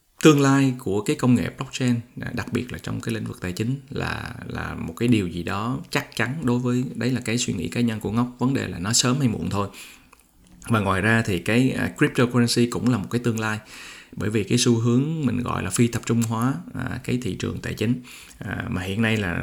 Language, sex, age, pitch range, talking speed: Vietnamese, male, 20-39, 110-125 Hz, 240 wpm